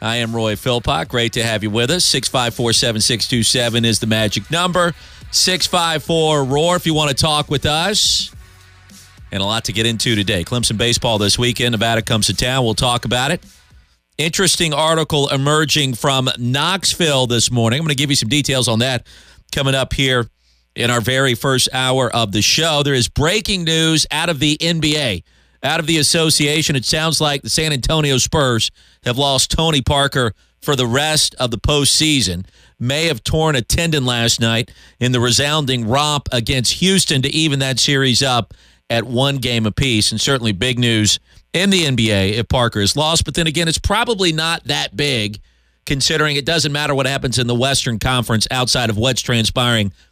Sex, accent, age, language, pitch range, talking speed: male, American, 40-59, English, 115-150 Hz, 190 wpm